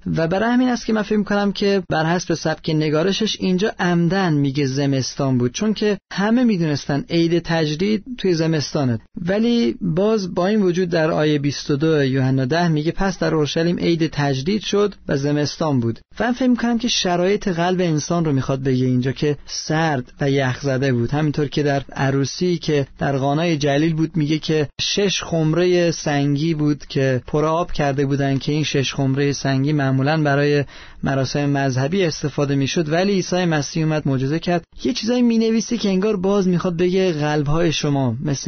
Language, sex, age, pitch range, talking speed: Persian, male, 30-49, 145-185 Hz, 175 wpm